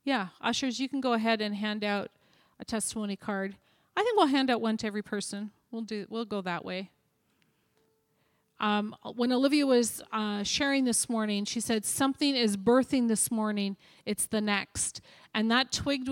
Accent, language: American, English